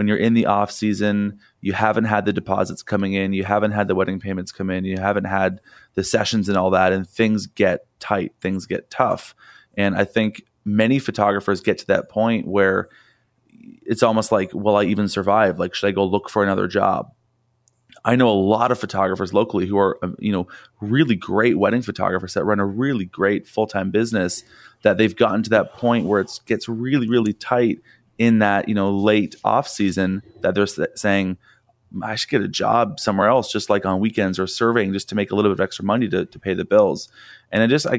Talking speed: 215 wpm